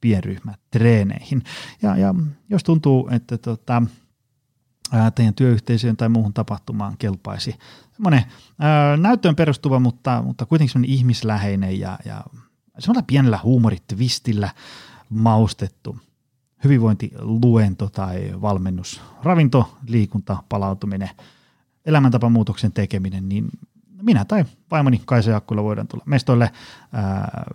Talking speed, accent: 95 wpm, native